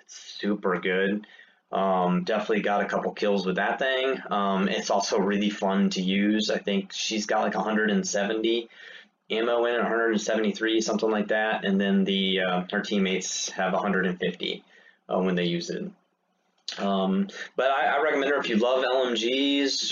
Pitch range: 100-120 Hz